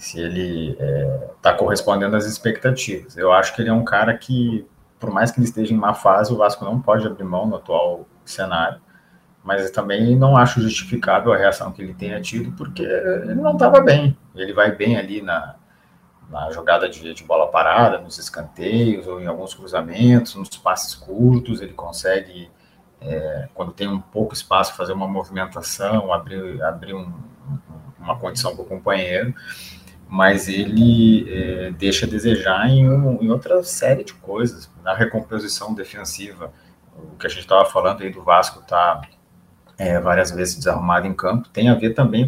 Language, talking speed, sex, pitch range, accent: Portuguese, 175 wpm, male, 95-120 Hz, Brazilian